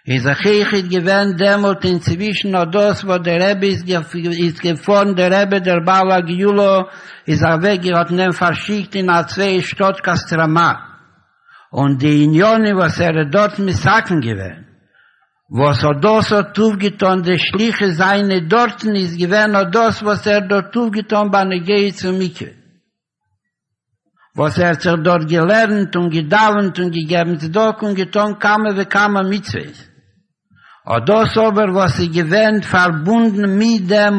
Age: 60-79